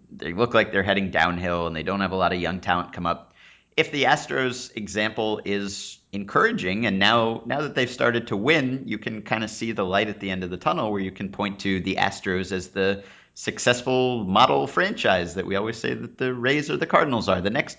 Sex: male